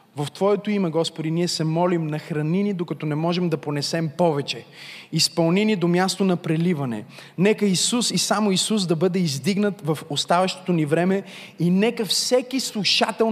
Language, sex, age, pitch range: Bulgarian, male, 20-39, 160-205 Hz